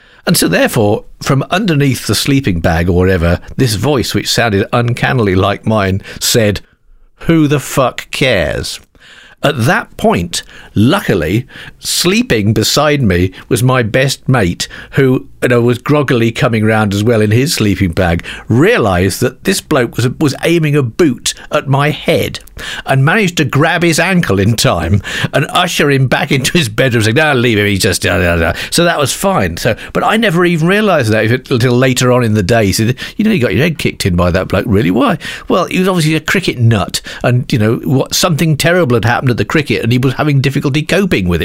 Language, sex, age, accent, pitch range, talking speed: English, male, 50-69, British, 110-165 Hz, 200 wpm